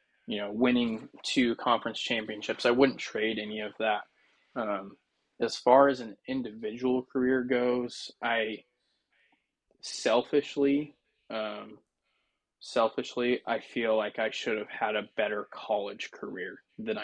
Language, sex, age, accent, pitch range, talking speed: English, male, 20-39, American, 110-130 Hz, 125 wpm